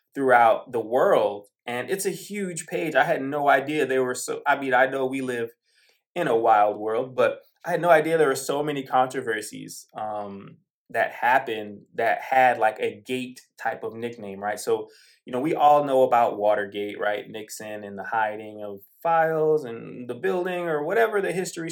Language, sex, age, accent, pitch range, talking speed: English, male, 20-39, American, 120-165 Hz, 190 wpm